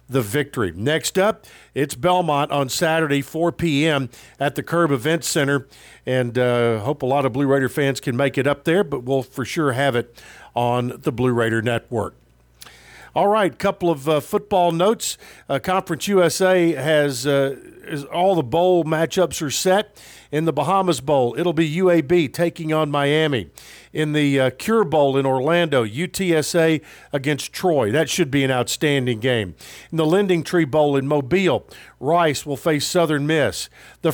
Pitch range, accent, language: 130-165 Hz, American, English